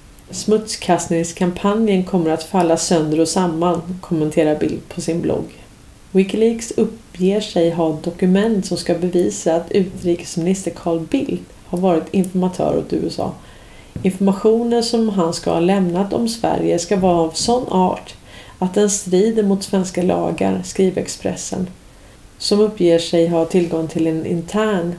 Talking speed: 140 wpm